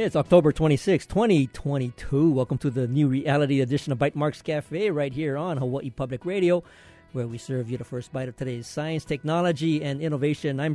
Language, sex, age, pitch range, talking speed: English, male, 50-69, 135-175 Hz, 190 wpm